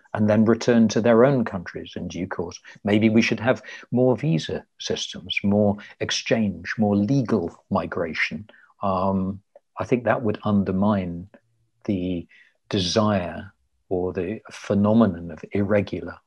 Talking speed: 130 wpm